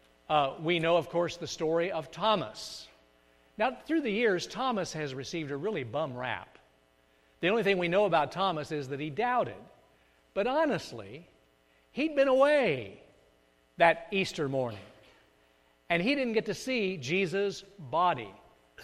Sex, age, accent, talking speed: male, 60-79, American, 150 wpm